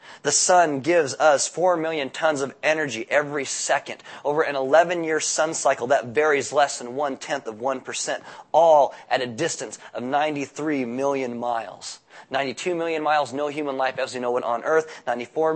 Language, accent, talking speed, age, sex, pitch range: English, American, 170 wpm, 30-49, male, 130-160 Hz